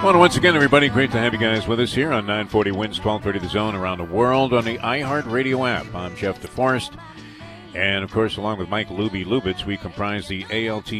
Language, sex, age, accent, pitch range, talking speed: English, male, 50-69, American, 95-120 Hz, 220 wpm